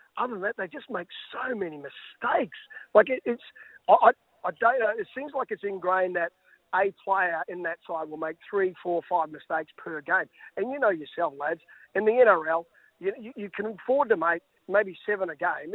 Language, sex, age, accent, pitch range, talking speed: English, male, 40-59, Australian, 165-210 Hz, 210 wpm